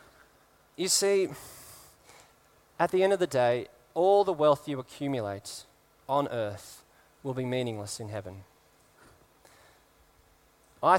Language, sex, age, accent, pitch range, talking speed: English, male, 20-39, Australian, 120-175 Hz, 115 wpm